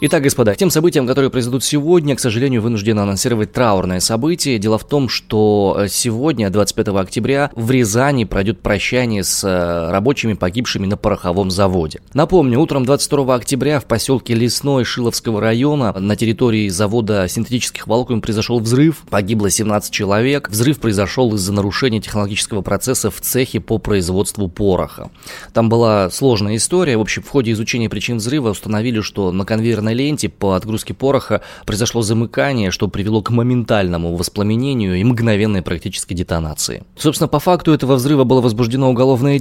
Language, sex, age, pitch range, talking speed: Russian, male, 20-39, 100-130 Hz, 150 wpm